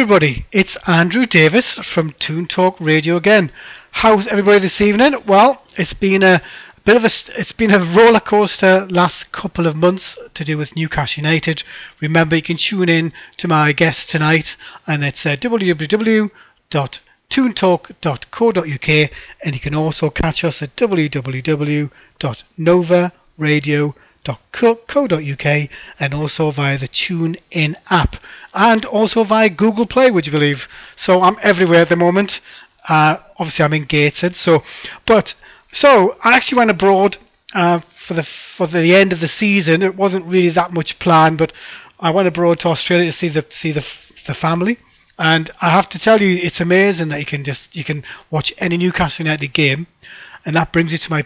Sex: male